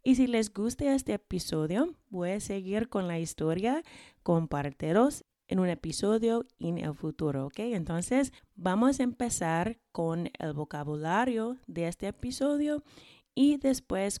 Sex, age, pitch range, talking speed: female, 20-39, 170-230 Hz, 135 wpm